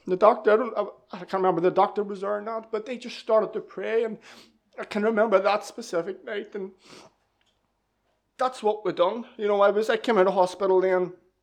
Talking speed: 225 wpm